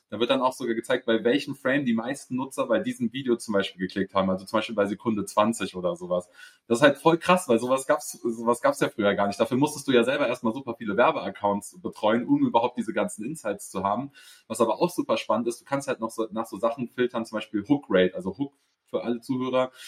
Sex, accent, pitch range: male, German, 105-130 Hz